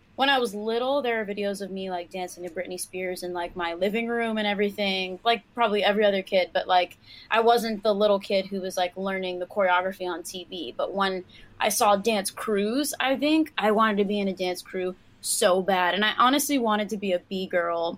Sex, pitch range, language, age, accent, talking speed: female, 190-235 Hz, English, 20-39, American, 225 wpm